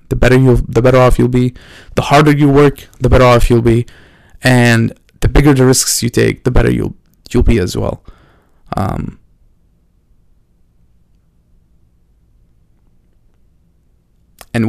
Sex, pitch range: male, 95-125 Hz